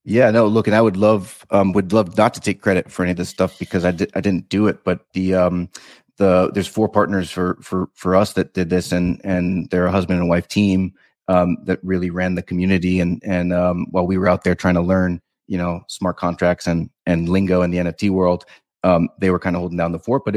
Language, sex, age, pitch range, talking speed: English, male, 30-49, 90-100 Hz, 255 wpm